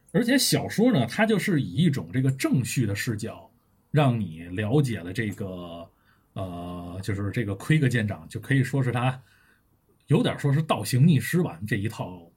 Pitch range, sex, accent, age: 105-145 Hz, male, native, 20-39